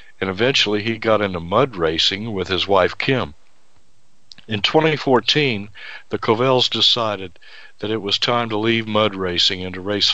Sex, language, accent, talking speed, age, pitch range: male, English, American, 160 wpm, 60-79, 95-115 Hz